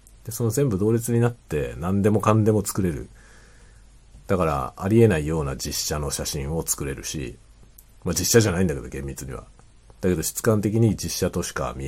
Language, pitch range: Japanese, 90-115 Hz